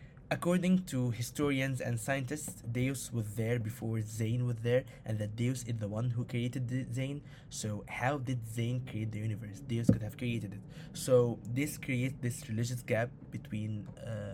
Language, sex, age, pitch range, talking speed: English, male, 20-39, 115-135 Hz, 165 wpm